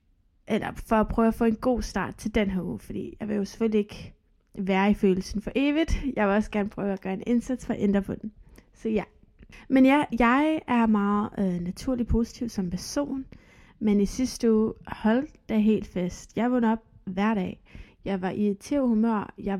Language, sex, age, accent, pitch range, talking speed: Danish, female, 20-39, native, 205-240 Hz, 200 wpm